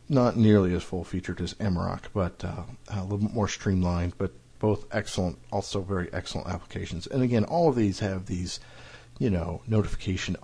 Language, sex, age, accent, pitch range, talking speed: English, male, 50-69, American, 95-110 Hz, 170 wpm